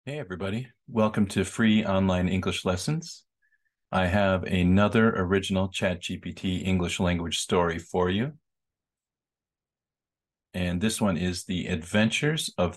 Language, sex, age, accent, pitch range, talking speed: English, male, 40-59, American, 90-110 Hz, 115 wpm